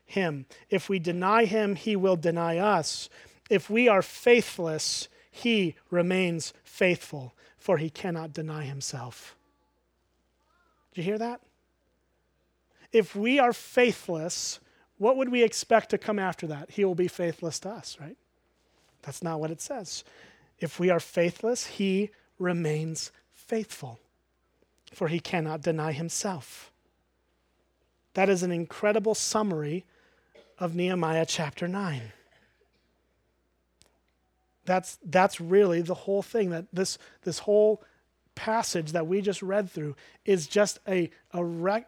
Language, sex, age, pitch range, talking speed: English, male, 30-49, 145-195 Hz, 130 wpm